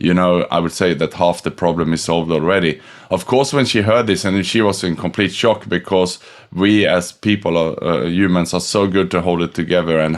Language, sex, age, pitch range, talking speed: English, male, 20-39, 85-100 Hz, 230 wpm